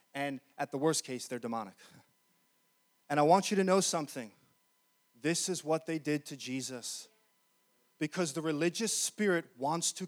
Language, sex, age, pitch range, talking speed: English, male, 20-39, 180-235 Hz, 160 wpm